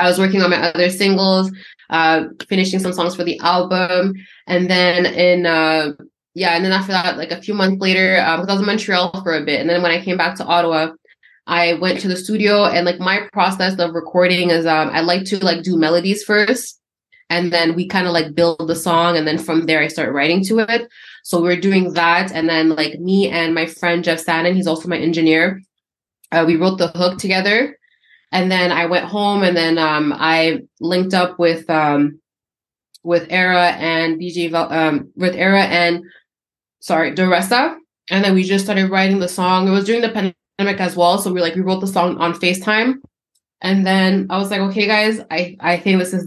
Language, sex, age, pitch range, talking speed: English, female, 20-39, 170-190 Hz, 215 wpm